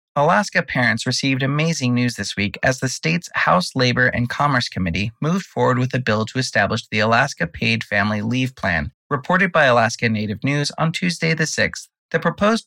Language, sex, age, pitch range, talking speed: English, male, 30-49, 115-160 Hz, 185 wpm